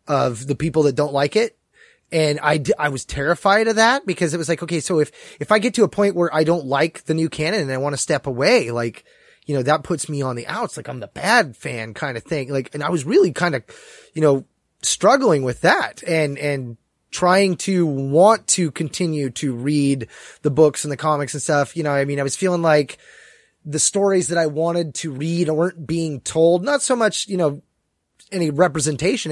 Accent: American